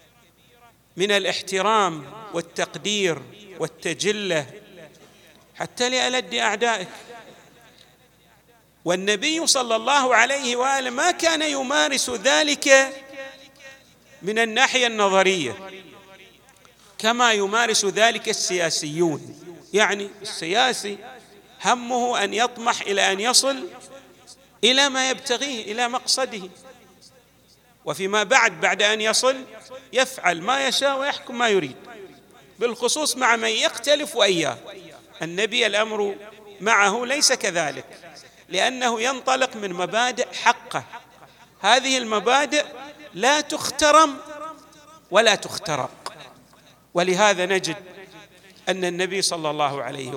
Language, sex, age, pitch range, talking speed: Arabic, male, 50-69, 195-265 Hz, 90 wpm